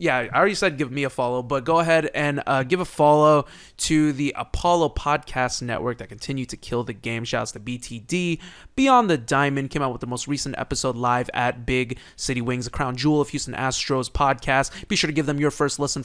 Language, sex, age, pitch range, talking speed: English, male, 20-39, 130-175 Hz, 225 wpm